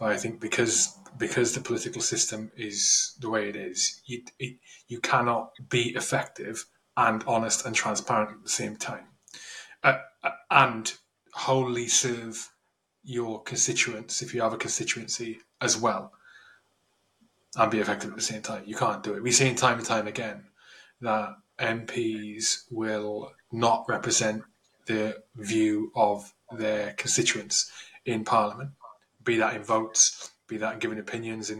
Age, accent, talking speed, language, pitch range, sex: 20-39, British, 150 wpm, English, 110-125 Hz, male